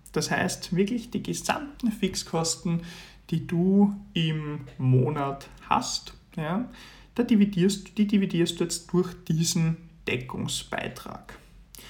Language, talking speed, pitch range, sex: German, 105 wpm, 155-195 Hz, male